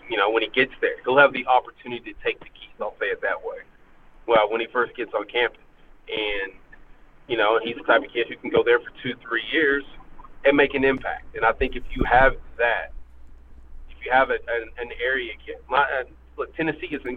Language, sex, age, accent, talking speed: English, male, 30-49, American, 220 wpm